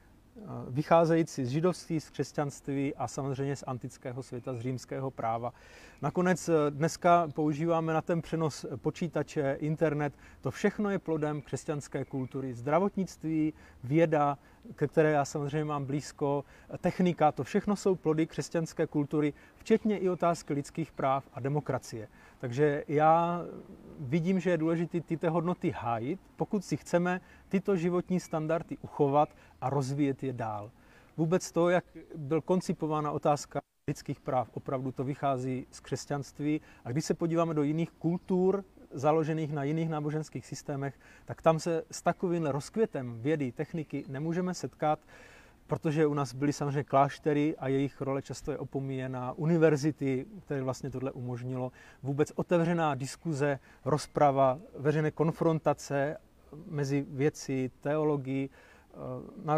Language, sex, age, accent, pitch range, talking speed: Czech, male, 30-49, native, 140-165 Hz, 130 wpm